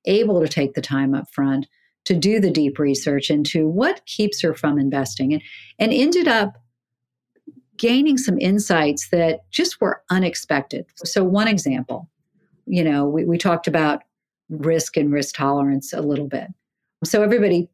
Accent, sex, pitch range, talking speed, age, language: American, female, 145-195 Hz, 160 wpm, 50-69, English